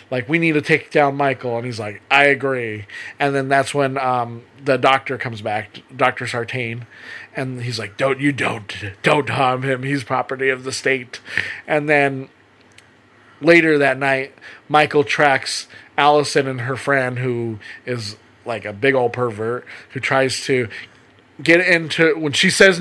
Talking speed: 165 wpm